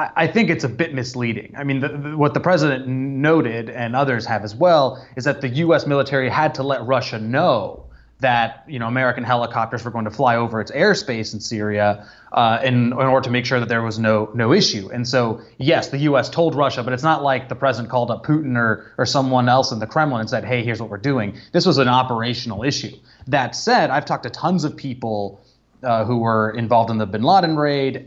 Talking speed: 230 wpm